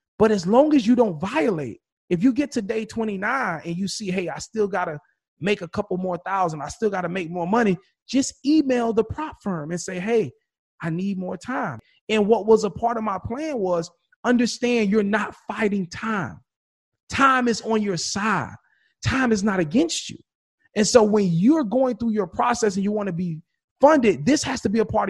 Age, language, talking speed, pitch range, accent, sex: 30-49, English, 215 wpm, 195-265 Hz, American, male